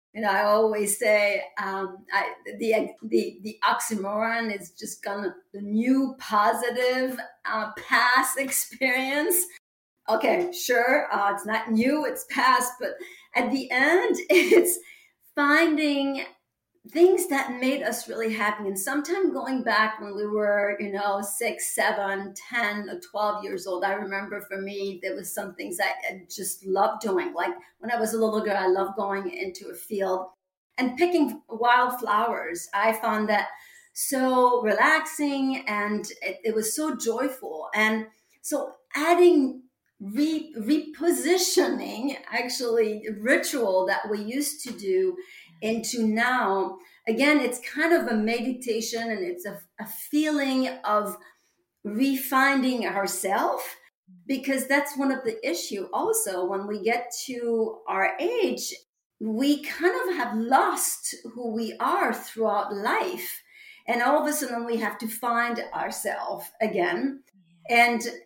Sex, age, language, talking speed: female, 40-59, English, 140 wpm